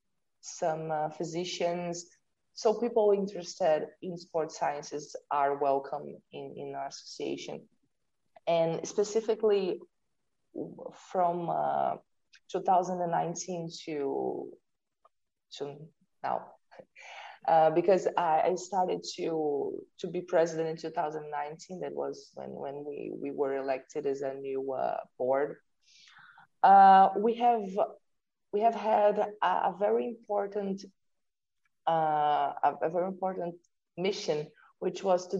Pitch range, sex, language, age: 155-195 Hz, female, English, 20-39